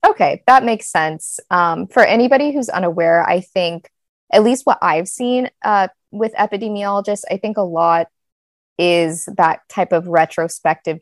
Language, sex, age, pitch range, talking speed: English, female, 20-39, 170-220 Hz, 150 wpm